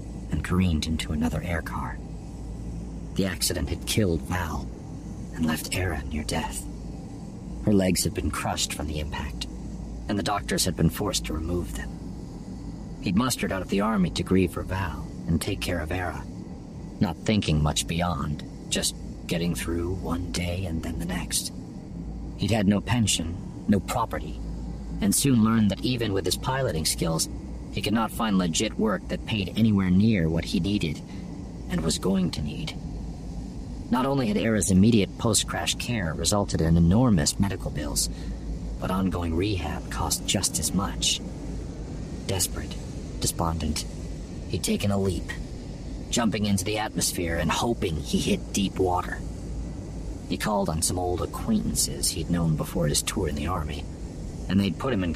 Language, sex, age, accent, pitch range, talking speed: English, male, 50-69, American, 80-95 Hz, 160 wpm